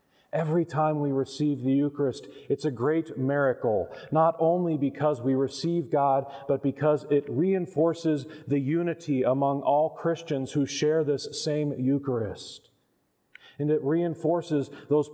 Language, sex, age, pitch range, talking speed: English, male, 40-59, 130-150 Hz, 135 wpm